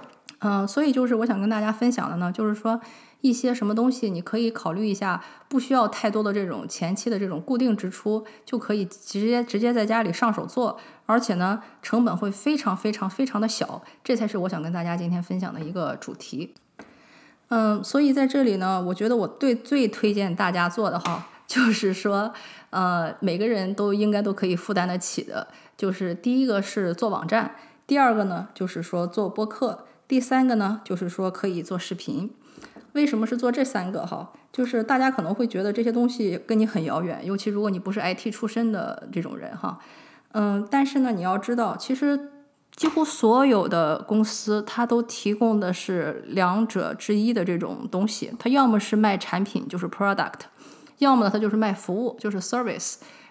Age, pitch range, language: 20-39, 195-240 Hz, English